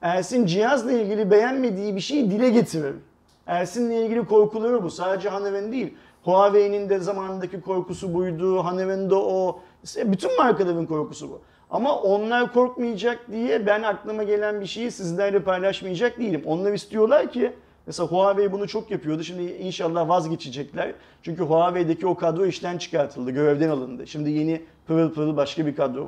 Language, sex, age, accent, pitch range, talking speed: Turkish, male, 40-59, native, 175-225 Hz, 150 wpm